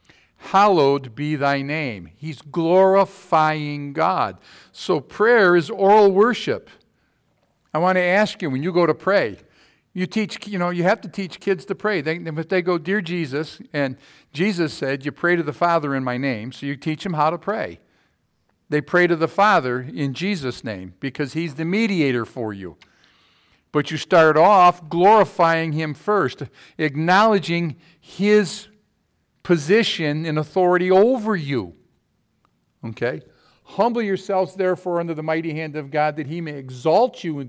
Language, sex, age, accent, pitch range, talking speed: English, male, 50-69, American, 140-185 Hz, 160 wpm